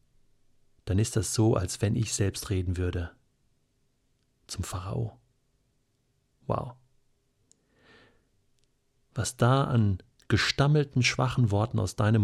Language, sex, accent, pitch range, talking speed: German, male, German, 105-130 Hz, 105 wpm